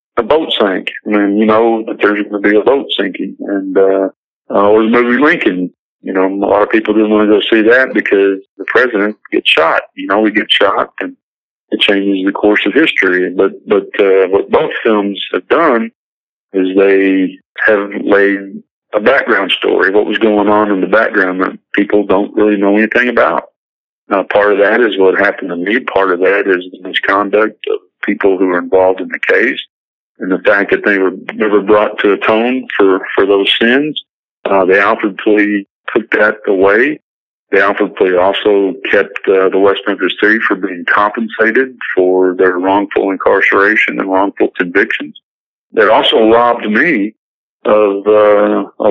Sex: male